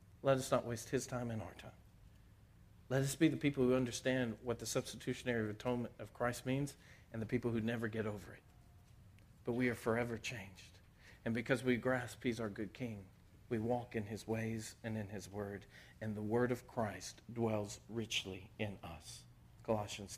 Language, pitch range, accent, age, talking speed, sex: English, 105-130 Hz, American, 50-69, 185 wpm, male